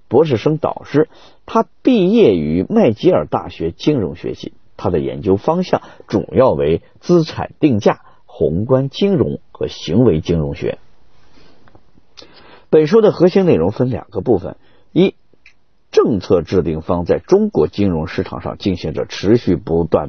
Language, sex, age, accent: Chinese, male, 50-69, native